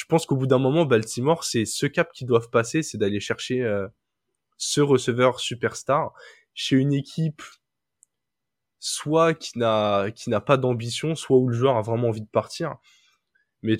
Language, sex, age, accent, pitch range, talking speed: French, male, 20-39, French, 105-130 Hz, 175 wpm